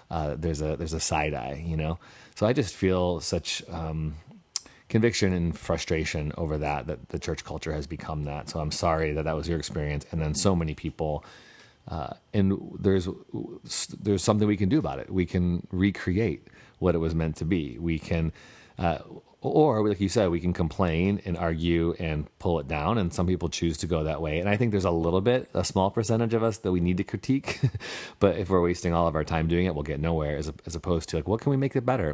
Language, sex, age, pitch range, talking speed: English, male, 30-49, 80-95 Hz, 235 wpm